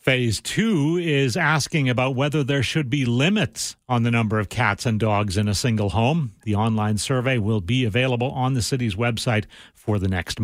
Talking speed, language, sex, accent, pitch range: 195 wpm, English, male, American, 115-145 Hz